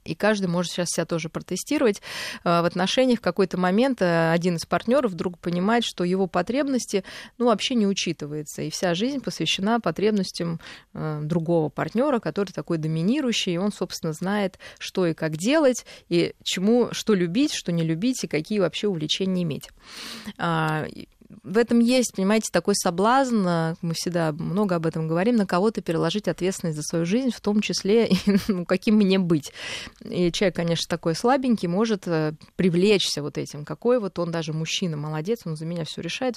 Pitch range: 170-220 Hz